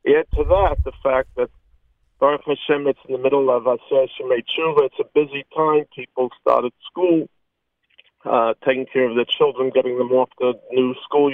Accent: American